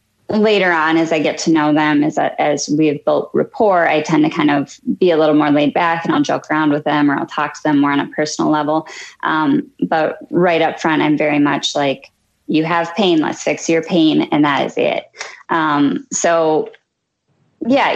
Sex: female